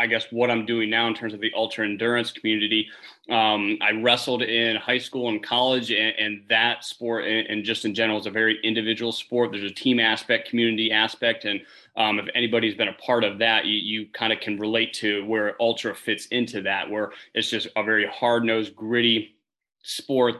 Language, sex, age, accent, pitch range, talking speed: English, male, 20-39, American, 110-120 Hz, 210 wpm